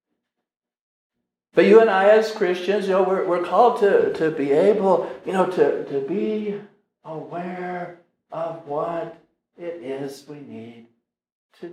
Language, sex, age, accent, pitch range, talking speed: English, male, 60-79, American, 160-205 Hz, 145 wpm